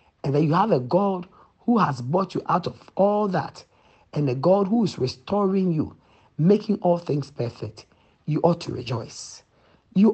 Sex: male